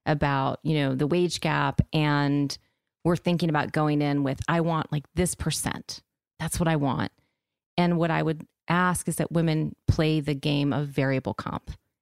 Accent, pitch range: American, 145-180 Hz